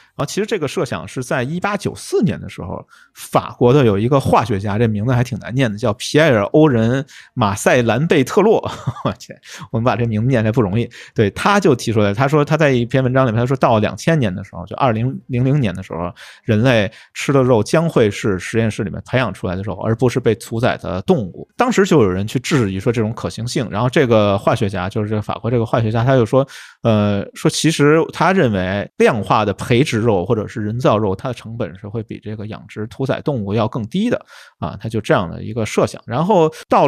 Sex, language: male, Chinese